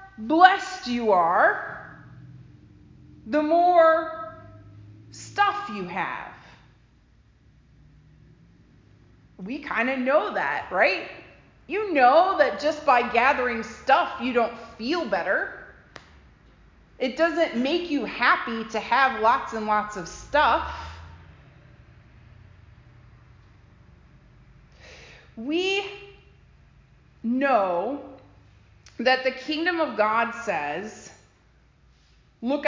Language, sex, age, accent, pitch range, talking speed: English, female, 30-49, American, 215-325 Hz, 85 wpm